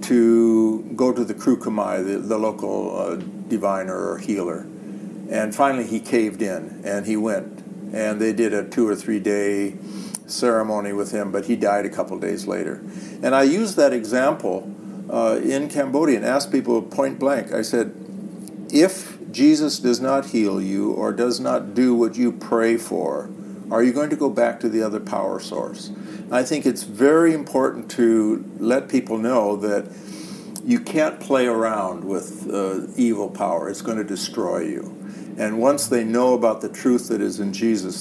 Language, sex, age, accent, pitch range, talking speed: English, male, 60-79, American, 105-135 Hz, 175 wpm